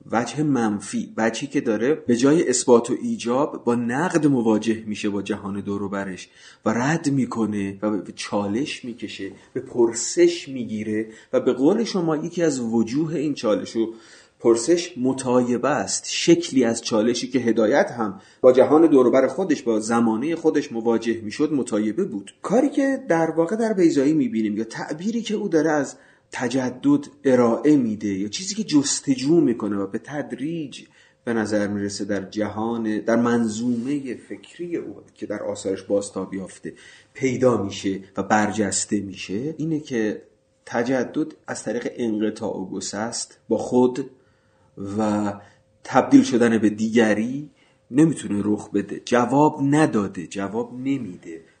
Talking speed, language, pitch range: 140 wpm, Persian, 105-155 Hz